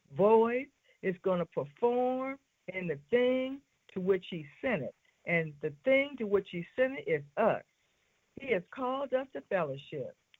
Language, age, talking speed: English, 60-79, 165 wpm